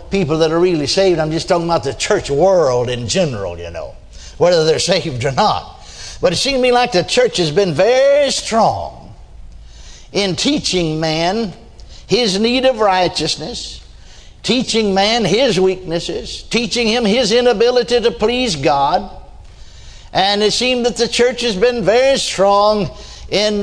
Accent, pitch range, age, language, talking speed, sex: American, 160-245 Hz, 60-79, English, 155 wpm, male